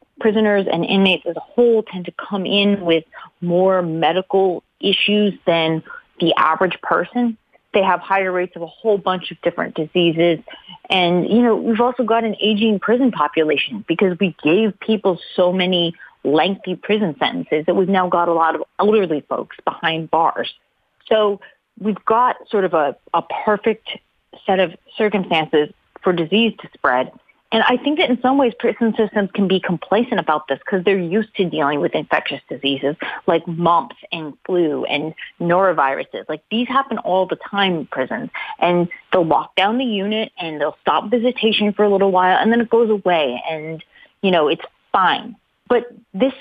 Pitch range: 170-220 Hz